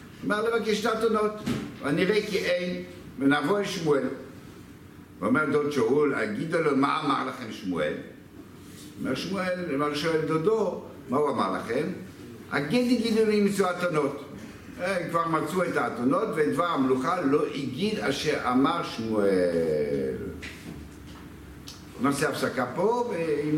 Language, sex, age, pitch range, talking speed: Hebrew, male, 60-79, 130-200 Hz, 125 wpm